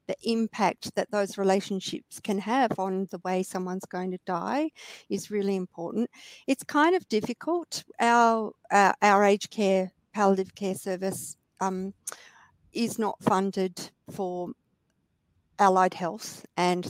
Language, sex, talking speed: English, female, 130 wpm